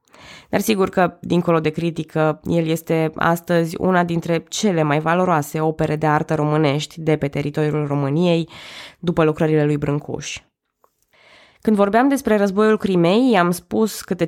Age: 20-39